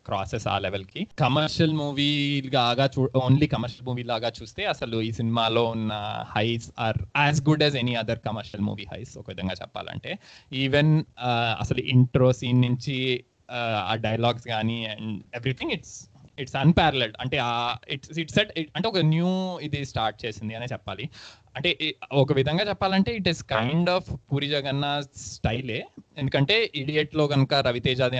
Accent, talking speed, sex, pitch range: native, 150 wpm, male, 115-145 Hz